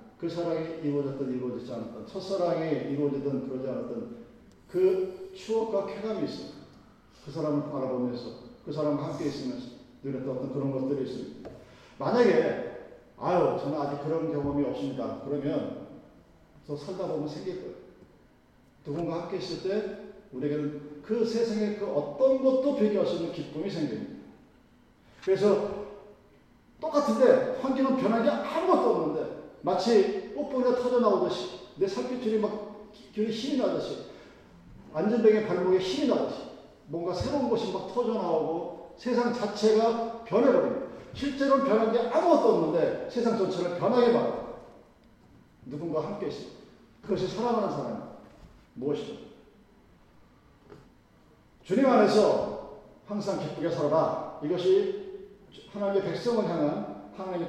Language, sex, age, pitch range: Korean, male, 40-59, 150-230 Hz